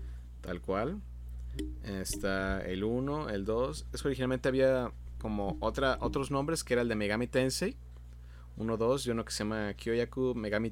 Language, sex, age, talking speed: Spanish, male, 30-49, 170 wpm